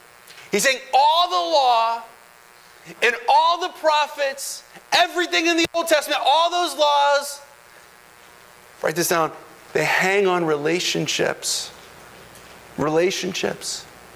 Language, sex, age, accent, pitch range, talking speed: English, male, 30-49, American, 220-315 Hz, 105 wpm